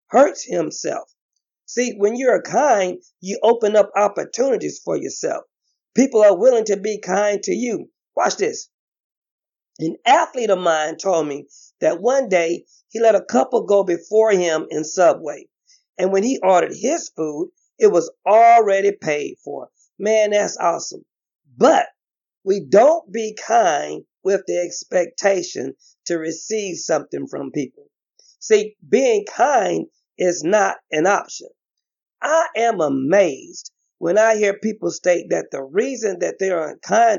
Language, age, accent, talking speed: English, 40-59, American, 145 wpm